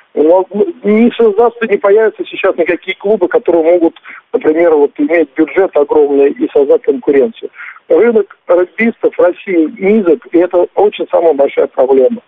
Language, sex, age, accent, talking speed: Russian, male, 50-69, native, 135 wpm